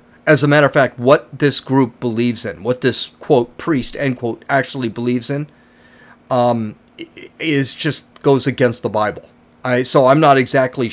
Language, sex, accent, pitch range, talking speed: English, male, American, 120-150 Hz, 170 wpm